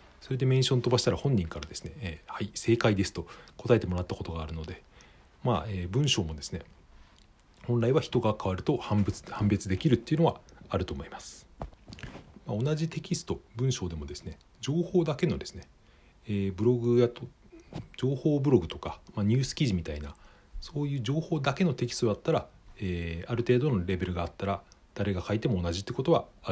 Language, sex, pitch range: Japanese, male, 85-125 Hz